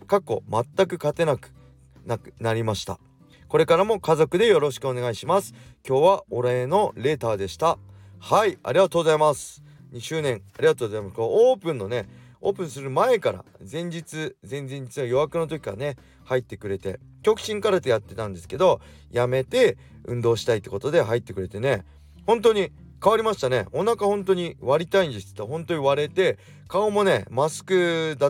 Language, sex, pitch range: Japanese, male, 110-170 Hz